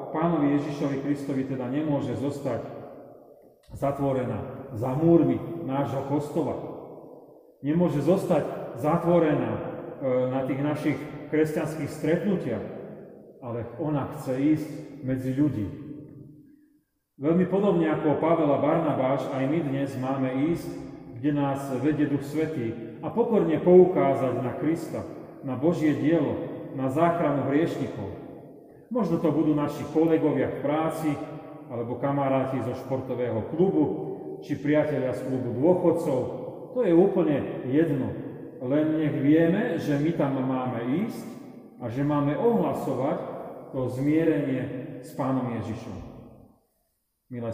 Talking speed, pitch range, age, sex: 115 wpm, 130-155 Hz, 30-49, male